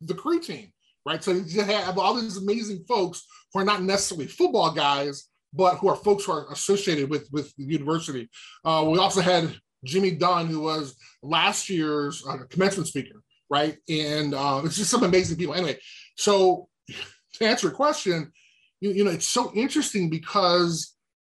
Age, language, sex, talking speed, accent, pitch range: 20-39, English, male, 175 wpm, American, 155-205 Hz